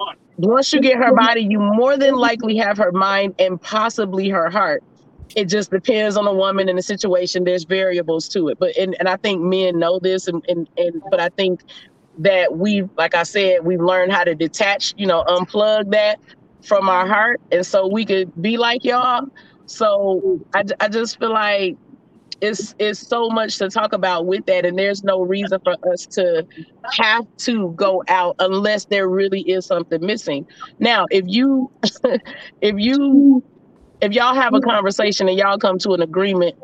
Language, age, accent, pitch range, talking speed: English, 30-49, American, 185-220 Hz, 190 wpm